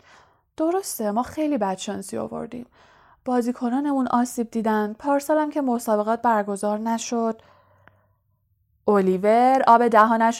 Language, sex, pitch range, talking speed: Persian, female, 205-280 Hz, 100 wpm